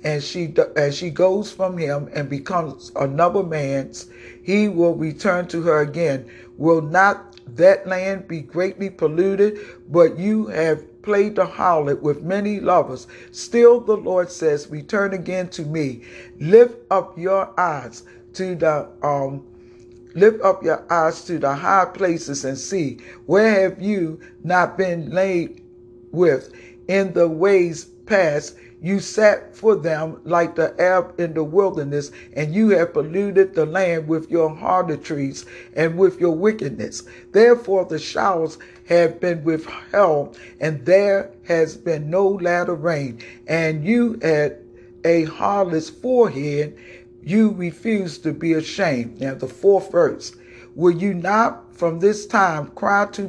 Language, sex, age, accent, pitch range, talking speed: English, male, 50-69, American, 145-190 Hz, 145 wpm